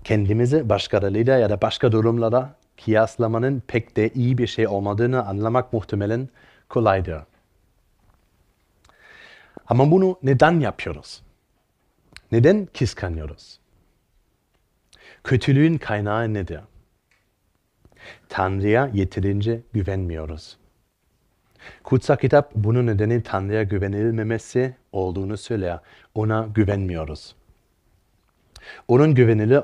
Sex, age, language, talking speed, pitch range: male, 40-59, Turkish, 80 wpm, 100-125 Hz